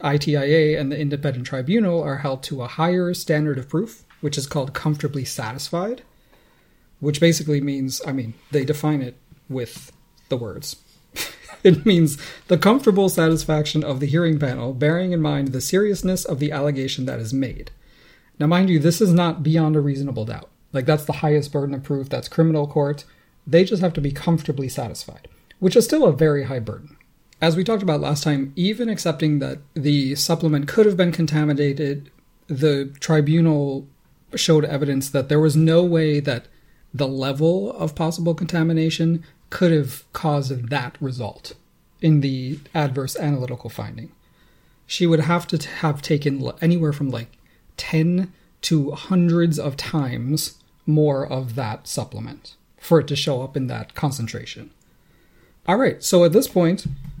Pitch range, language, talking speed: 140-165 Hz, English, 165 wpm